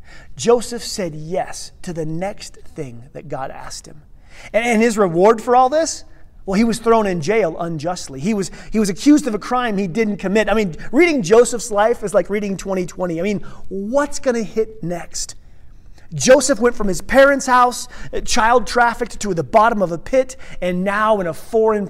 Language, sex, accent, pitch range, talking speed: English, male, American, 175-230 Hz, 190 wpm